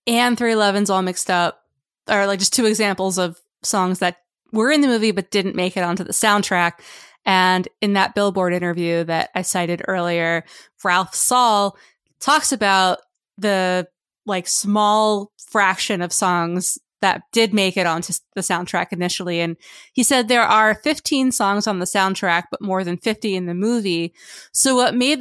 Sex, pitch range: female, 180-225 Hz